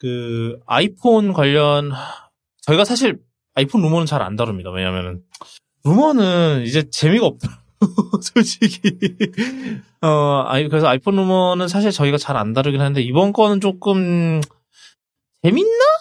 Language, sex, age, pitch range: Korean, male, 20-39, 130-205 Hz